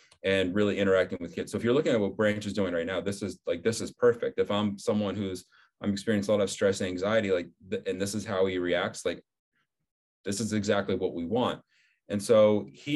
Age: 30-49